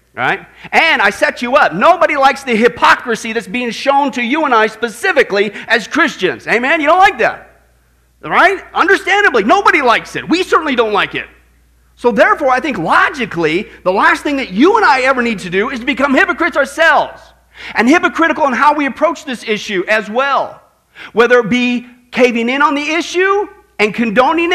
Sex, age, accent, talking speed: male, 40-59, American, 185 wpm